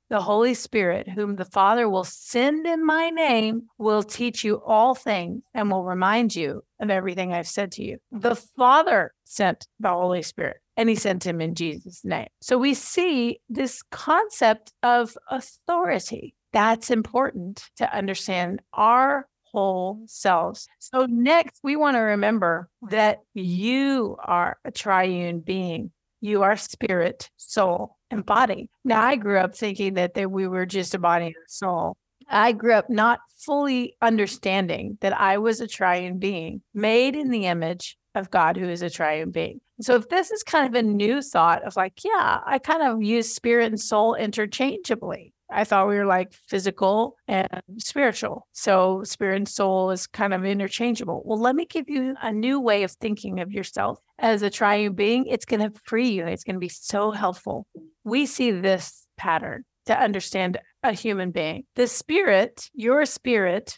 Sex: female